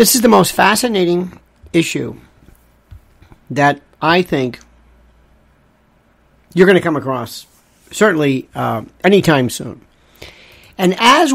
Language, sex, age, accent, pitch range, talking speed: English, male, 50-69, American, 120-180 Hz, 105 wpm